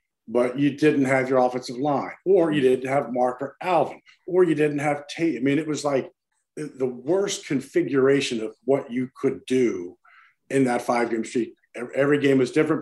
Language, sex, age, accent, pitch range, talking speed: English, male, 50-69, American, 125-155 Hz, 185 wpm